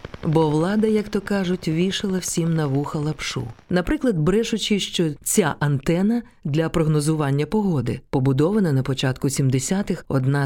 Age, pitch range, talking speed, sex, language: 40-59, 135-175 Hz, 130 wpm, female, Ukrainian